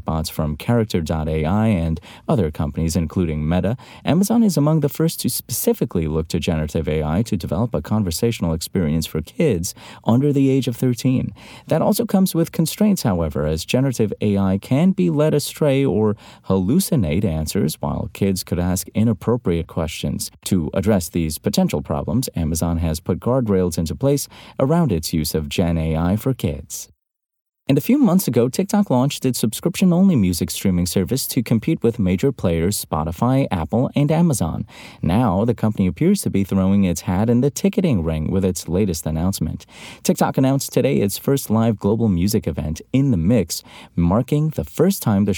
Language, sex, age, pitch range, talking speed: English, male, 30-49, 85-135 Hz, 170 wpm